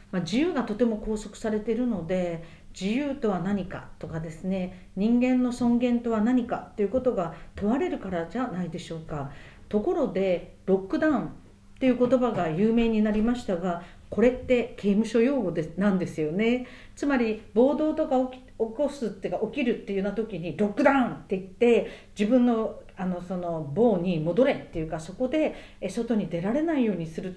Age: 50-69